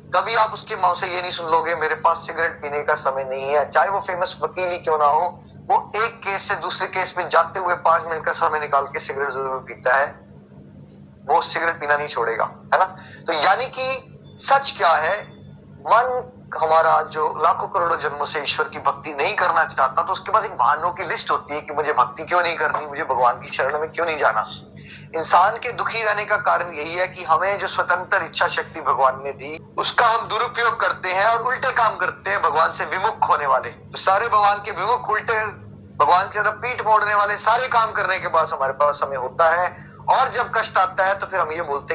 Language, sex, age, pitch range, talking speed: Hindi, male, 20-39, 150-195 Hz, 215 wpm